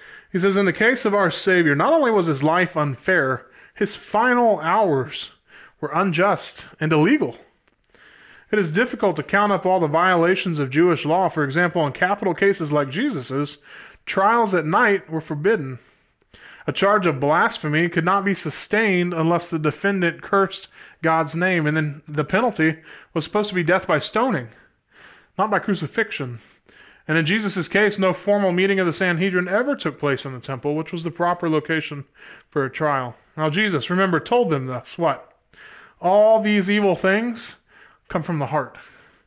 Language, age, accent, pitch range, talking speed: English, 20-39, American, 150-195 Hz, 170 wpm